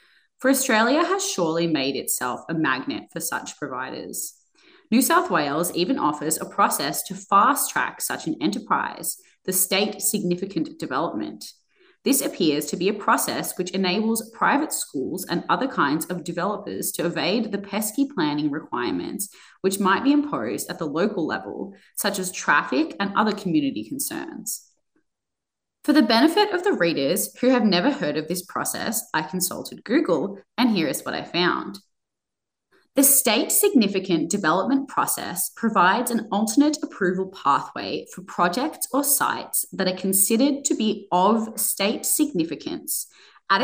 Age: 20-39